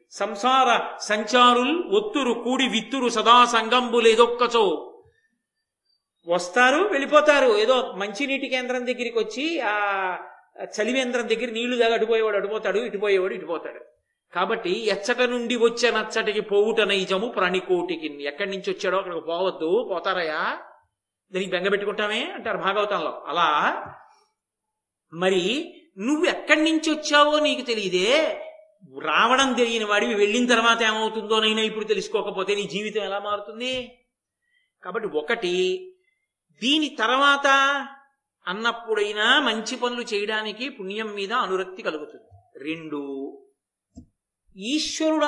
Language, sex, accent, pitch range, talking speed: Telugu, male, native, 205-270 Hz, 105 wpm